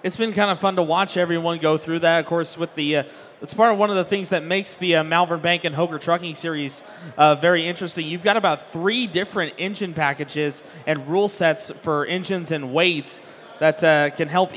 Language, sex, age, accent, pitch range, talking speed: English, male, 20-39, American, 160-185 Hz, 225 wpm